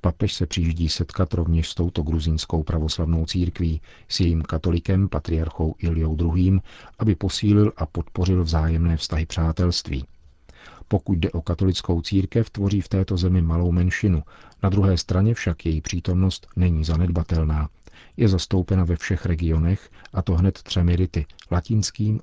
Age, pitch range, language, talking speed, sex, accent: 50-69, 80-95 Hz, Czech, 145 wpm, male, native